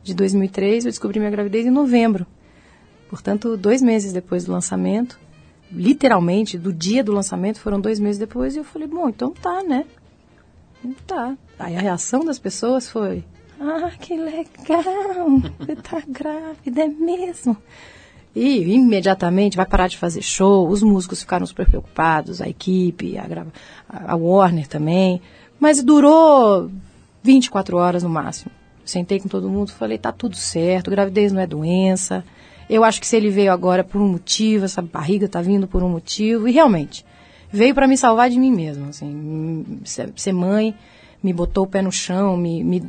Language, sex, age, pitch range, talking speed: Portuguese, female, 30-49, 180-245 Hz, 165 wpm